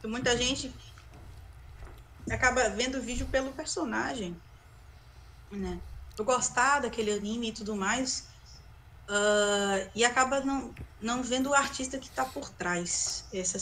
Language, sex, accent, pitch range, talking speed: Portuguese, female, Brazilian, 205-260 Hz, 130 wpm